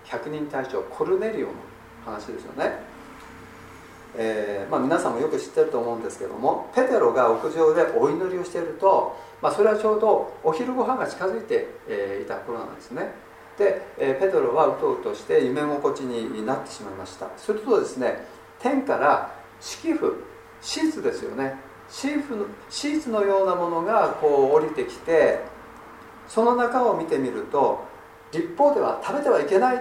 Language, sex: Japanese, male